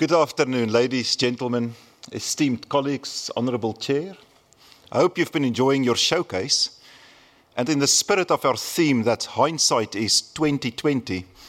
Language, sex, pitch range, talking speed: English, male, 120-160 Hz, 135 wpm